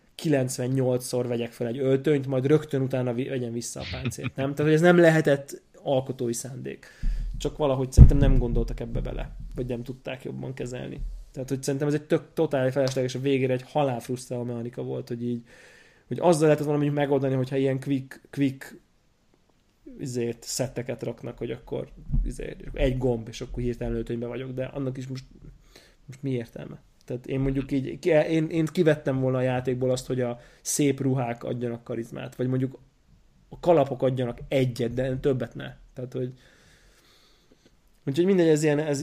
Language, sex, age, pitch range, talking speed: Hungarian, male, 20-39, 125-145 Hz, 170 wpm